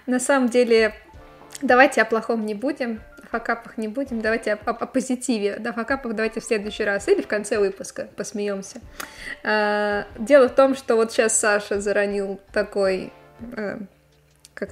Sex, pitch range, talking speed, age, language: female, 200-235 Hz, 165 wpm, 20-39, Russian